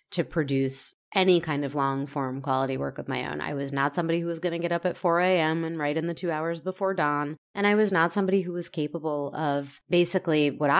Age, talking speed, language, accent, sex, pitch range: 30-49, 240 wpm, English, American, female, 140-170 Hz